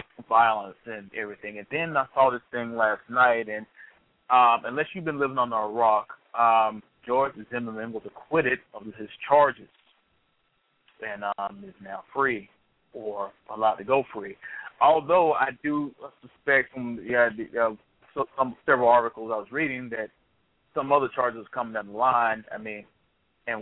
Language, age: English, 30-49